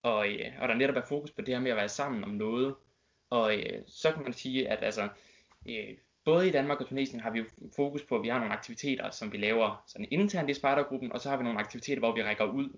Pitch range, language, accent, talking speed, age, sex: 115-140 Hz, Danish, native, 255 wpm, 20-39, male